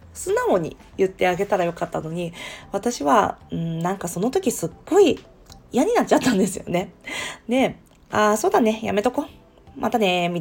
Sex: female